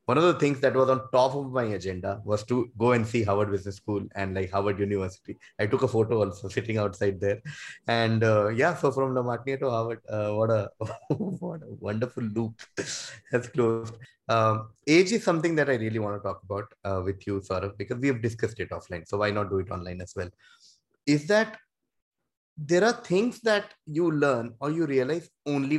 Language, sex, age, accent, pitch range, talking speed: English, male, 20-39, Indian, 105-145 Hz, 205 wpm